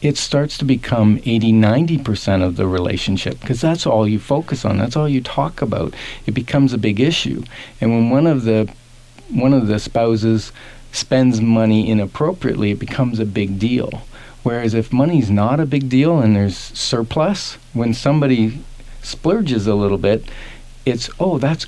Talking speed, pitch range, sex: 170 wpm, 105-135 Hz, male